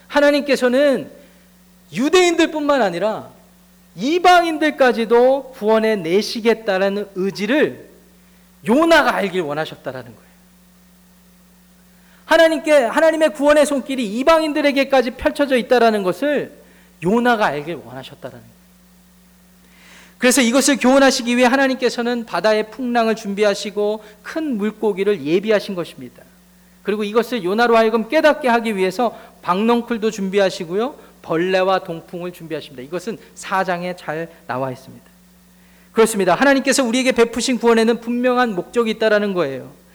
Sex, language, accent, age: male, Korean, native, 40-59